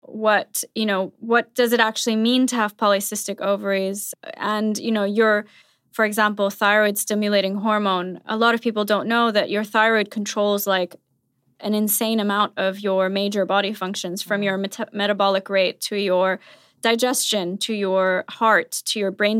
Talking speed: 165 wpm